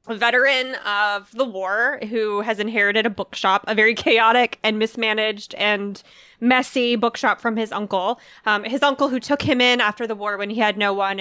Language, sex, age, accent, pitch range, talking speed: English, female, 20-39, American, 205-250 Hz, 195 wpm